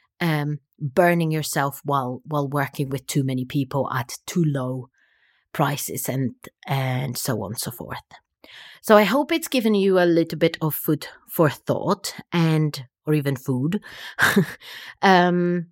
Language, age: English, 30-49